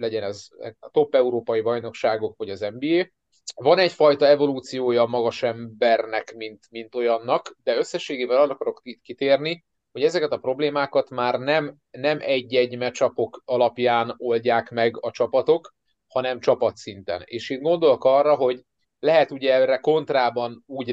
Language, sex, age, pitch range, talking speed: Hungarian, male, 30-49, 115-145 Hz, 145 wpm